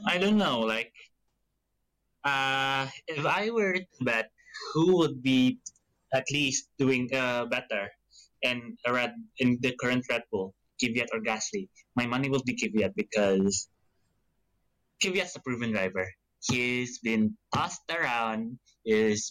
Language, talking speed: English, 135 wpm